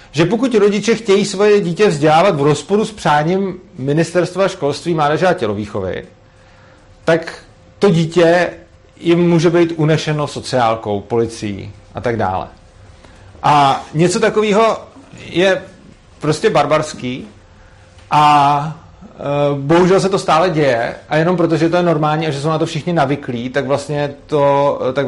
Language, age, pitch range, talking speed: Czech, 40-59, 120-175 Hz, 140 wpm